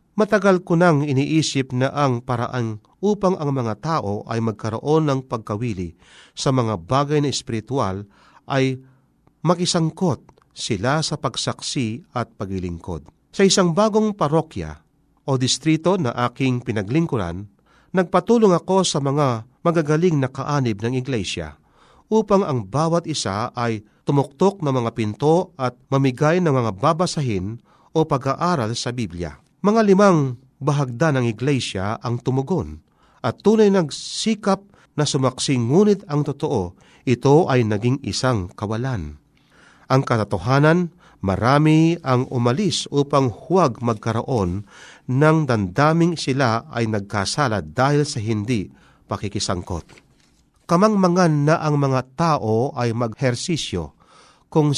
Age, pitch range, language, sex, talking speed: 40-59, 115-160 Hz, Filipino, male, 120 wpm